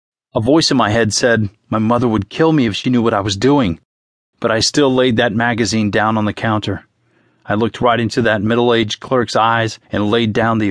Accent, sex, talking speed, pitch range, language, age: American, male, 225 wpm, 105-130 Hz, English, 30-49